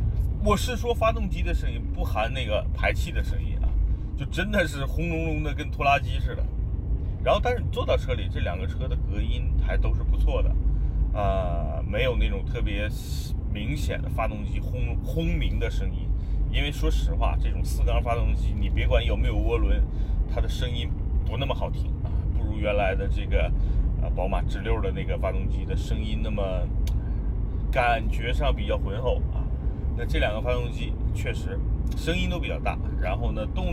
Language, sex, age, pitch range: Chinese, male, 30-49, 70-95 Hz